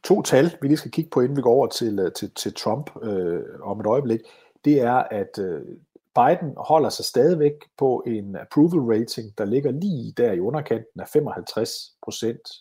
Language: Danish